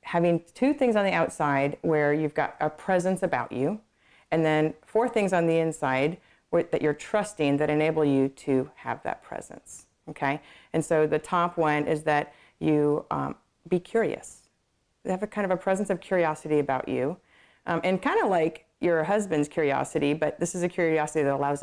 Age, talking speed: 40-59, 190 wpm